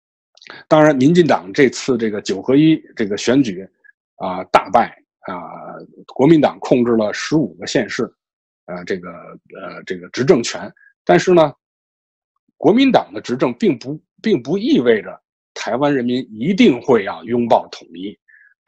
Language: Chinese